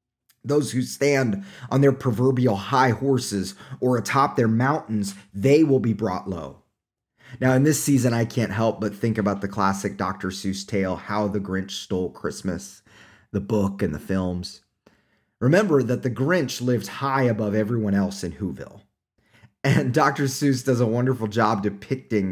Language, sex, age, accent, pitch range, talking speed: English, male, 30-49, American, 100-130 Hz, 165 wpm